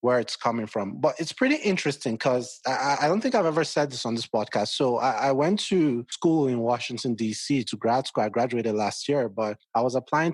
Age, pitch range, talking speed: 30-49, 110-135 Hz, 230 wpm